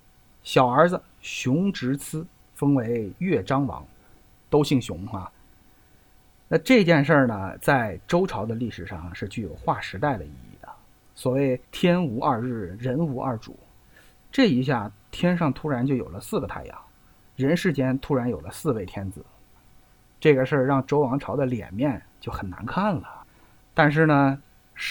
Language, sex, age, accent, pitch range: Chinese, male, 50-69, native, 110-160 Hz